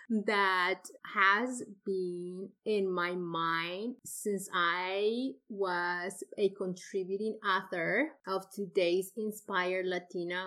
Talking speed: 90 wpm